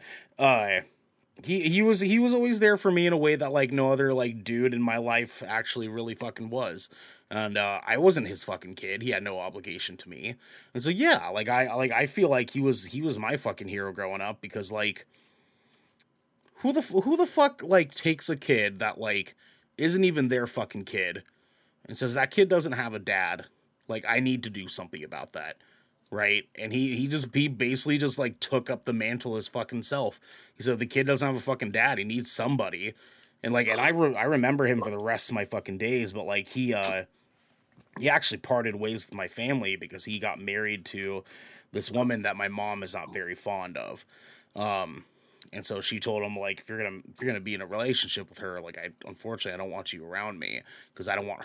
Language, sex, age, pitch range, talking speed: English, male, 30-49, 105-140 Hz, 225 wpm